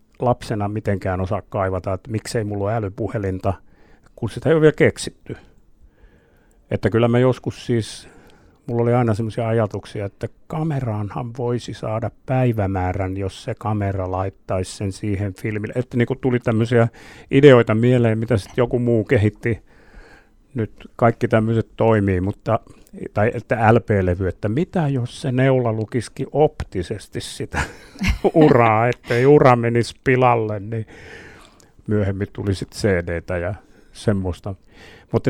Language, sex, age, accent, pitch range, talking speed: Finnish, male, 50-69, native, 100-120 Hz, 130 wpm